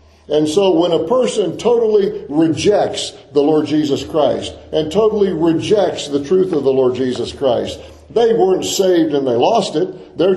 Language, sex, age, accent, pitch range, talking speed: English, male, 50-69, American, 135-200 Hz, 170 wpm